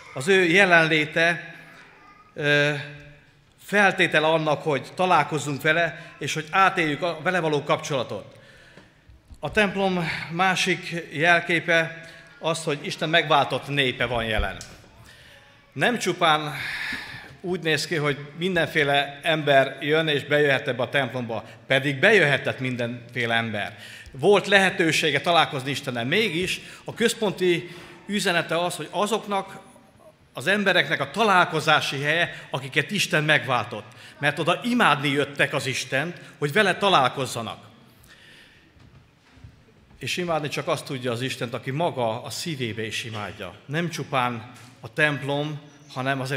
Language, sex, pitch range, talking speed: Hungarian, male, 140-175 Hz, 120 wpm